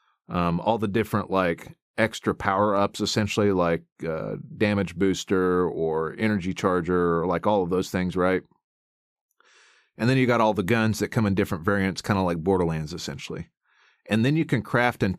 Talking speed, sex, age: 180 wpm, male, 40-59